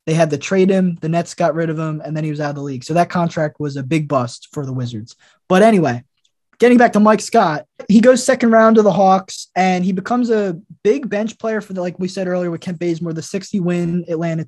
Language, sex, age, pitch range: English, male, 20-39, 170-235 Hz